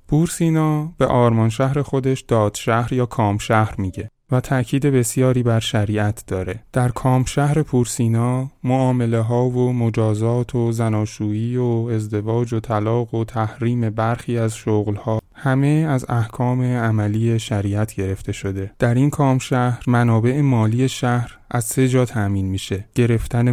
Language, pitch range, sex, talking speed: Persian, 105-125 Hz, male, 145 wpm